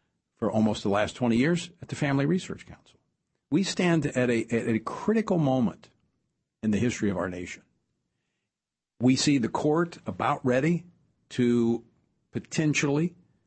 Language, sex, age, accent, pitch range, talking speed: English, male, 50-69, American, 115-170 Hz, 145 wpm